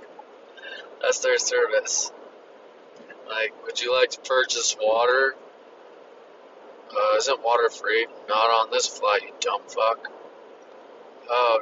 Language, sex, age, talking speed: English, male, 20-39, 115 wpm